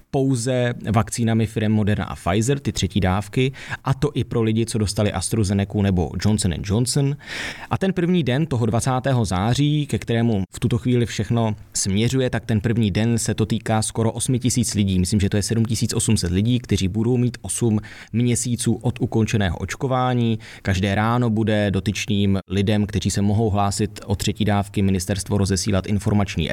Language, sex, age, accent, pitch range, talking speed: Czech, male, 20-39, native, 105-125 Hz, 165 wpm